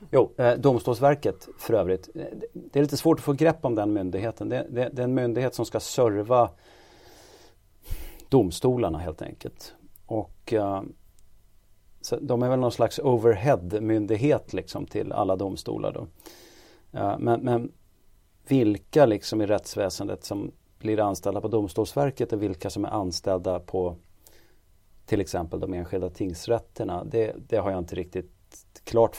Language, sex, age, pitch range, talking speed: Swedish, male, 40-59, 95-120 Hz, 135 wpm